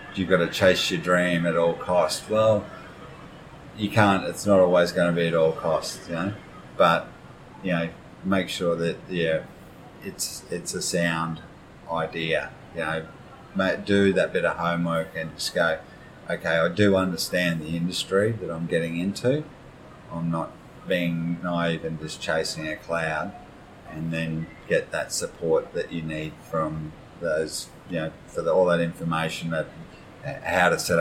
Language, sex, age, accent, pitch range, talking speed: English, male, 30-49, Australian, 80-90 Hz, 165 wpm